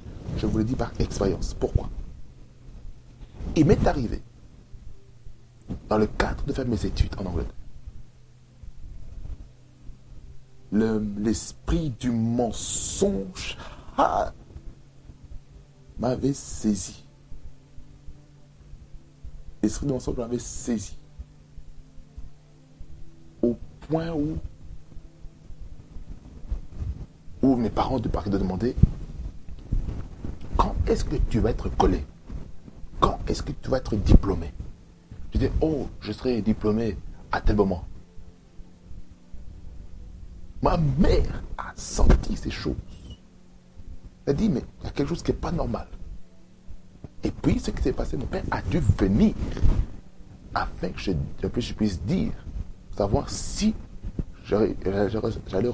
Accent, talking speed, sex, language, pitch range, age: French, 110 wpm, male, French, 80-115 Hz, 60-79